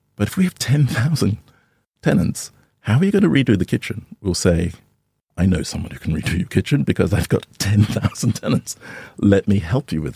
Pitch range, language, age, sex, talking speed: 90-115 Hz, English, 50-69, male, 200 wpm